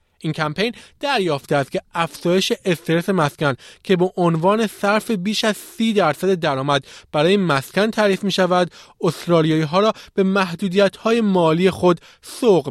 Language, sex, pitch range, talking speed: Persian, male, 145-195 Hz, 145 wpm